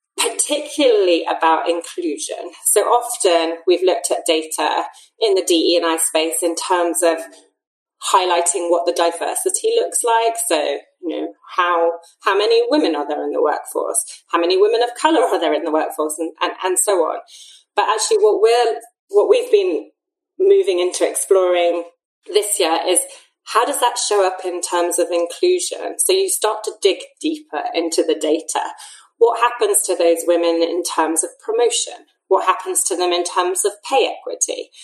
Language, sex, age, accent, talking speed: English, female, 30-49, British, 170 wpm